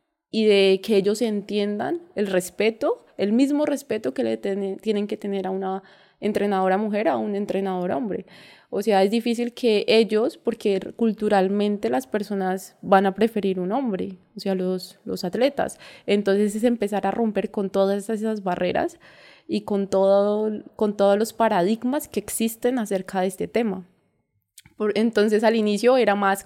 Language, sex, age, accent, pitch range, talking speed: Spanish, female, 20-39, Colombian, 185-215 Hz, 165 wpm